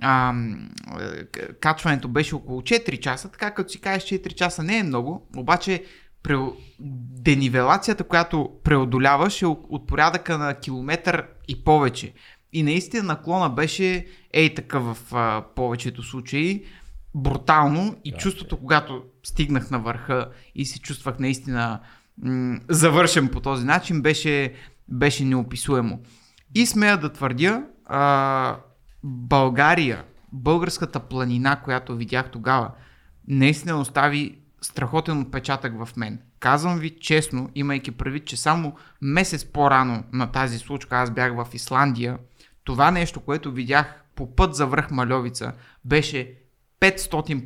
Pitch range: 125-160 Hz